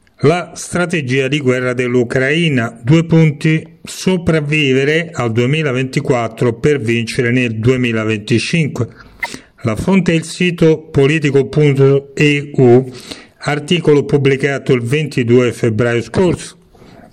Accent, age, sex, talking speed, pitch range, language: native, 40-59, male, 90 wpm, 125-155 Hz, Italian